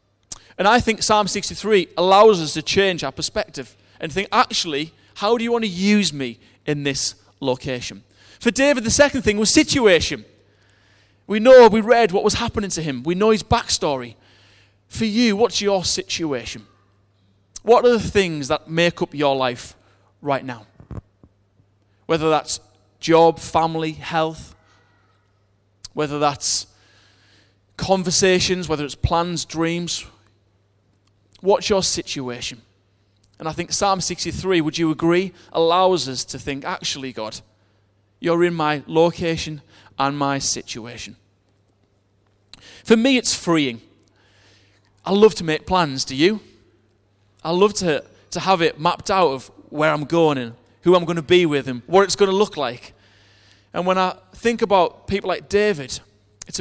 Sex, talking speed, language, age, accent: male, 150 wpm, English, 30-49, British